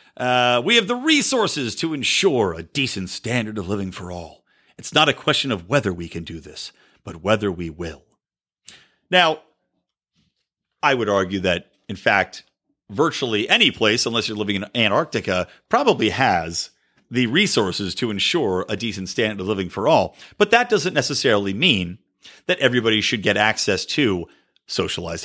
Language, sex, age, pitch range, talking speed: English, male, 40-59, 100-150 Hz, 160 wpm